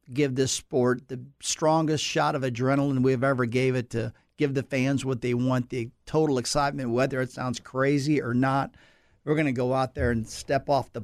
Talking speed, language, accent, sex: 205 wpm, English, American, male